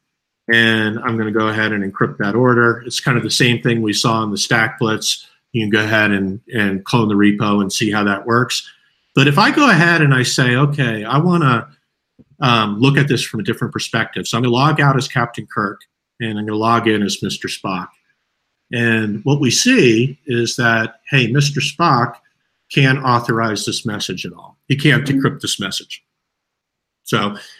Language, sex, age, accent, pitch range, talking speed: English, male, 50-69, American, 110-145 Hz, 205 wpm